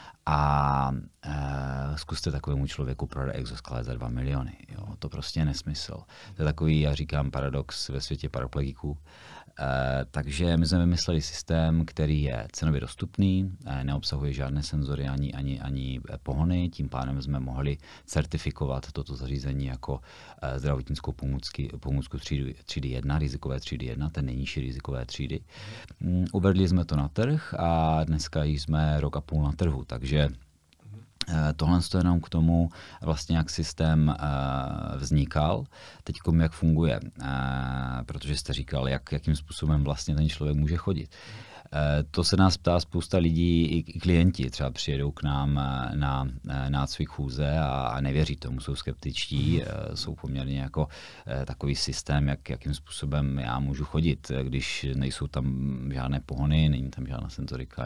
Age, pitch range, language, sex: 40-59, 70-80 Hz, Czech, male